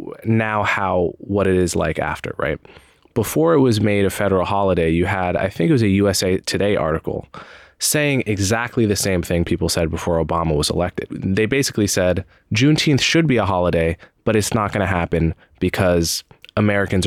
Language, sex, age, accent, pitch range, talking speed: English, male, 20-39, American, 85-105 Hz, 185 wpm